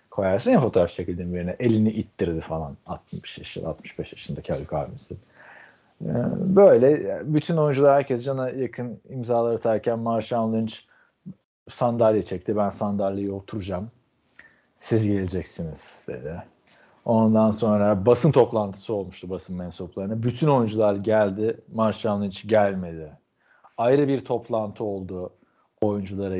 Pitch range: 95-120 Hz